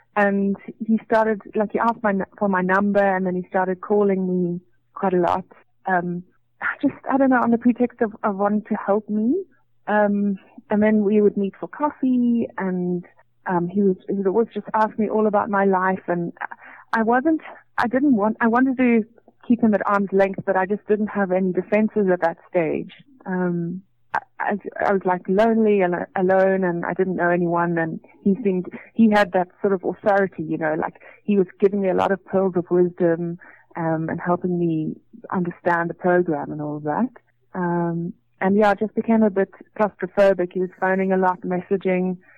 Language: English